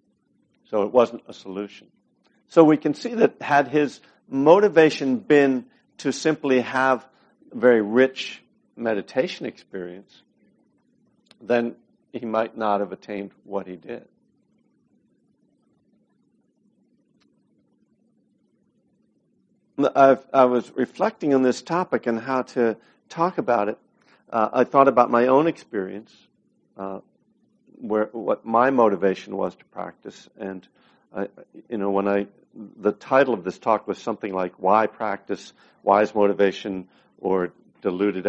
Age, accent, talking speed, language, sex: 60-79, American, 125 wpm, English, male